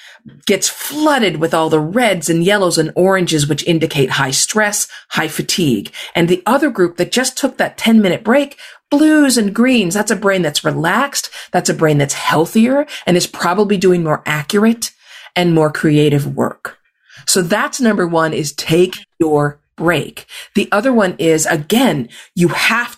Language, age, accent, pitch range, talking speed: English, 40-59, American, 170-240 Hz, 165 wpm